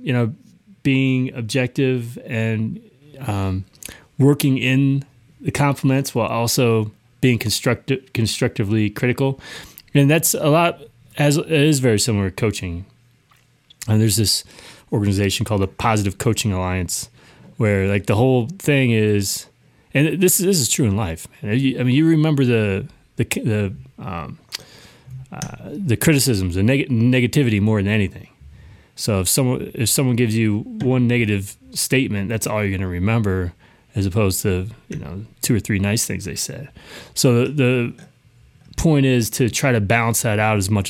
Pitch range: 105-135 Hz